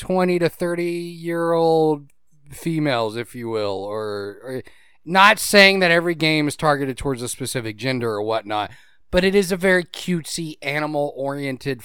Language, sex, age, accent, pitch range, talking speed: English, male, 30-49, American, 135-205 Hz, 160 wpm